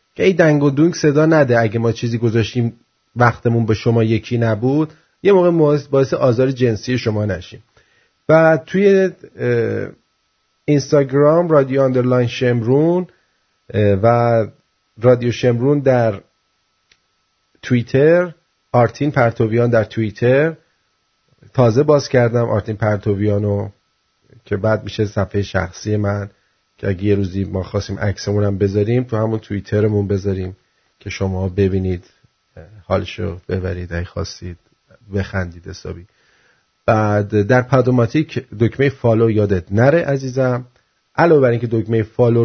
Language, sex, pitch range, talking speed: English, male, 105-140 Hz, 115 wpm